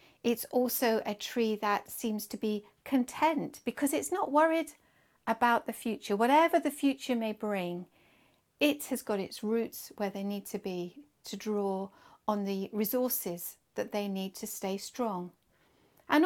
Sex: female